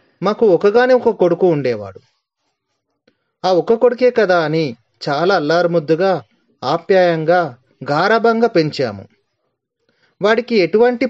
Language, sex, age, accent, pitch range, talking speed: Telugu, male, 30-49, native, 130-190 Hz, 90 wpm